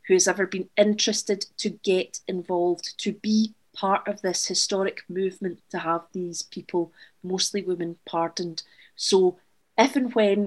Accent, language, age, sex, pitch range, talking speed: British, English, 40-59, female, 180-215 Hz, 150 wpm